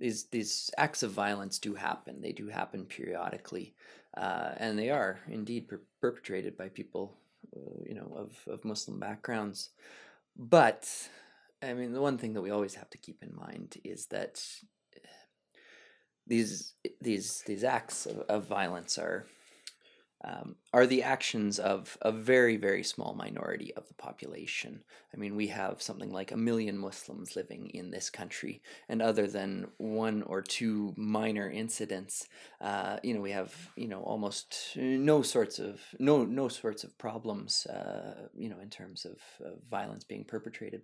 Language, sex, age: English, male, 20-39